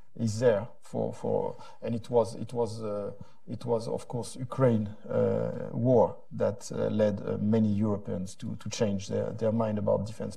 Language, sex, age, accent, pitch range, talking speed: English, male, 50-69, French, 120-155 Hz, 180 wpm